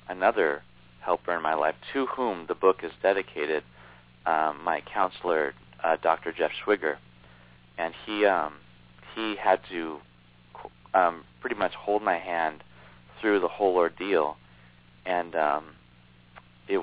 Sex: male